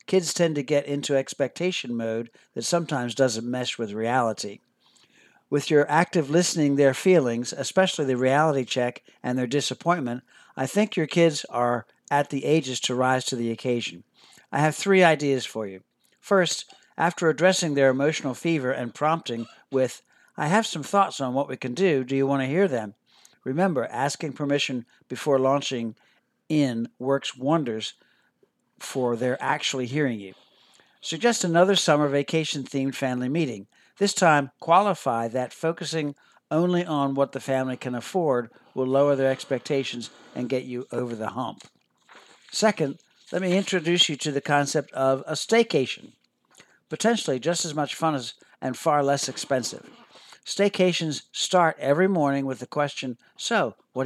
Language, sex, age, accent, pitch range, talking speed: English, male, 60-79, American, 130-165 Hz, 155 wpm